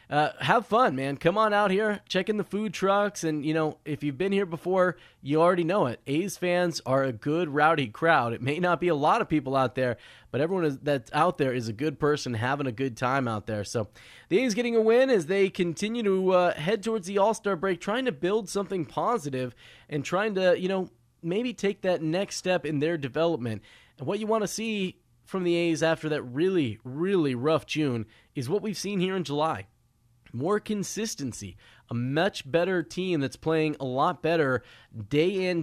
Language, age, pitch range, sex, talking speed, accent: English, 20-39, 130-185 Hz, male, 210 wpm, American